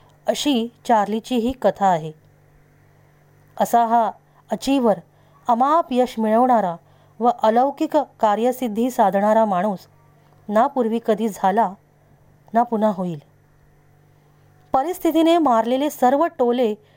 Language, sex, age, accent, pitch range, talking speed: Marathi, female, 20-39, native, 155-255 Hz, 95 wpm